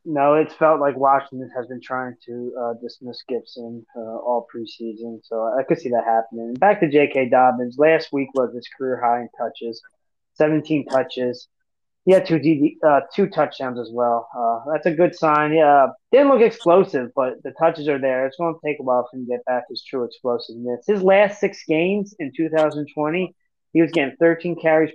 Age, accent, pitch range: 20-39, American, 125-165 Hz